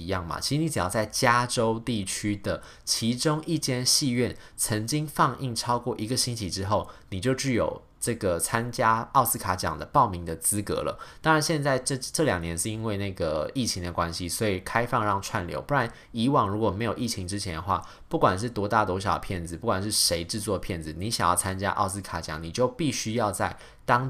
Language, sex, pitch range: Chinese, male, 90-120 Hz